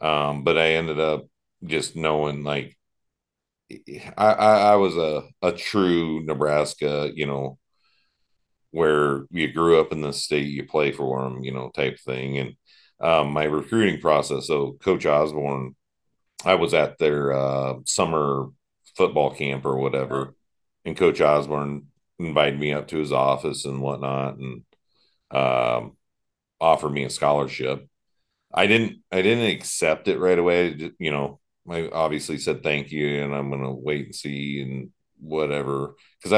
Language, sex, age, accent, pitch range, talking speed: English, male, 40-59, American, 70-80 Hz, 155 wpm